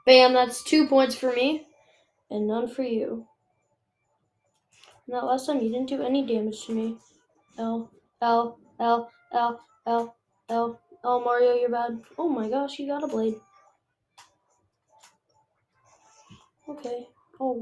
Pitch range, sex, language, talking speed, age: 225-270 Hz, female, English, 135 wpm, 10-29